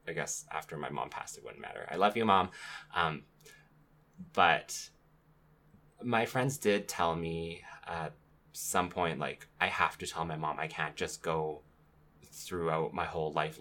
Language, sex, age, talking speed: English, male, 20-39, 170 wpm